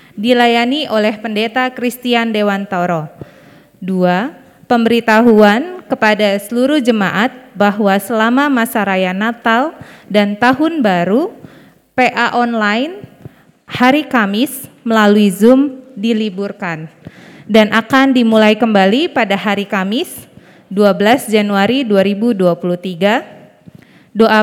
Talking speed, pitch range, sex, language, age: 90 wpm, 195-245 Hz, female, Indonesian, 20-39